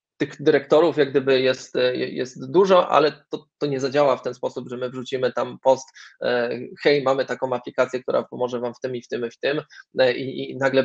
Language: Polish